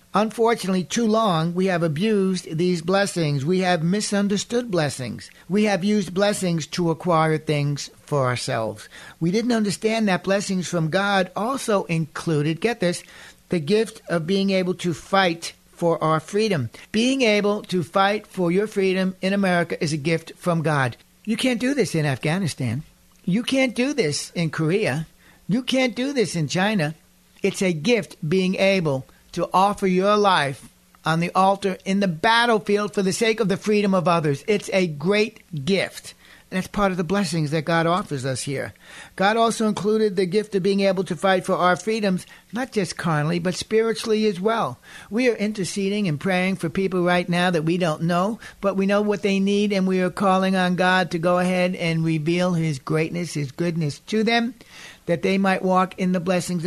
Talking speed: 185 wpm